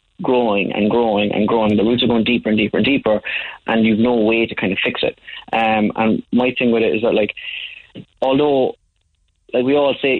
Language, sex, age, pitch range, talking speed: English, male, 20-39, 110-125 Hz, 220 wpm